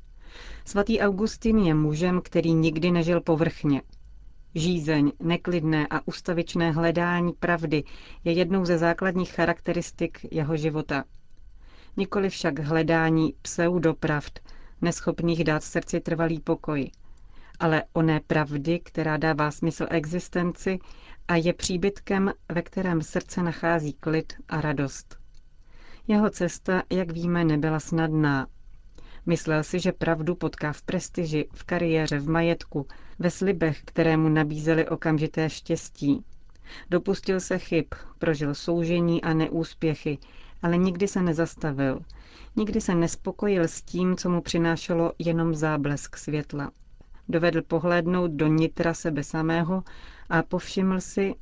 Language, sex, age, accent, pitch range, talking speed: Czech, female, 40-59, native, 155-175 Hz, 120 wpm